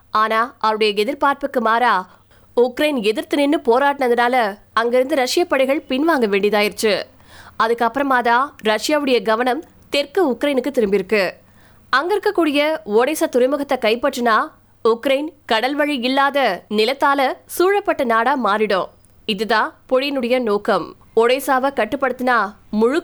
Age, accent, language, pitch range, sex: 20-39, native, Tamil, 225-280 Hz, female